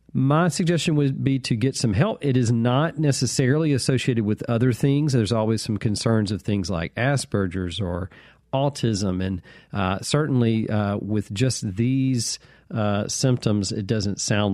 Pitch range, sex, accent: 100-135 Hz, male, American